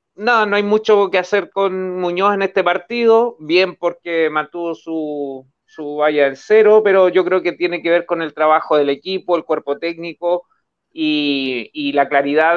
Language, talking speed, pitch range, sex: Spanish, 180 wpm, 155-195 Hz, male